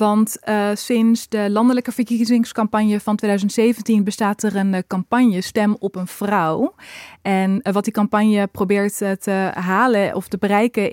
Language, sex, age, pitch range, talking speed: Dutch, female, 20-39, 195-225 Hz, 160 wpm